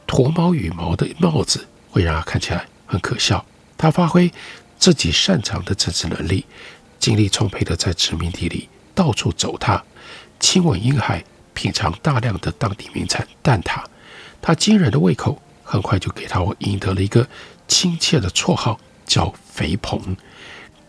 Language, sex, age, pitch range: Chinese, male, 60-79, 95-155 Hz